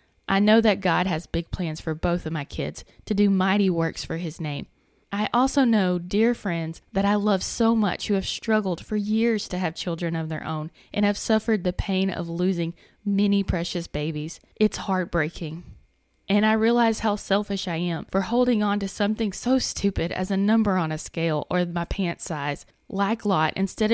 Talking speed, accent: 200 wpm, American